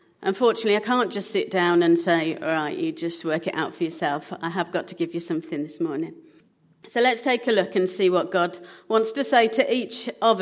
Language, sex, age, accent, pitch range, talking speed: English, female, 50-69, British, 185-265 Hz, 235 wpm